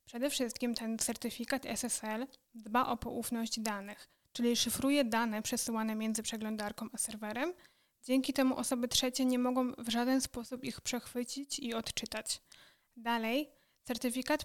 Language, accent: Polish, native